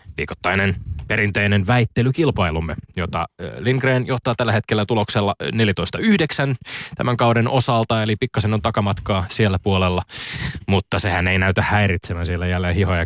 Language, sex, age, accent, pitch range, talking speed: Finnish, male, 20-39, native, 95-125 Hz, 125 wpm